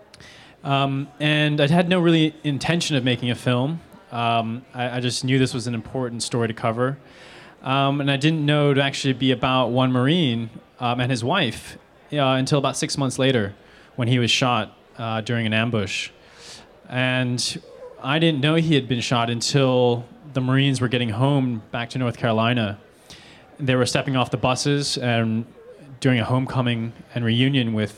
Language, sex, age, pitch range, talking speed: English, male, 20-39, 115-135 Hz, 180 wpm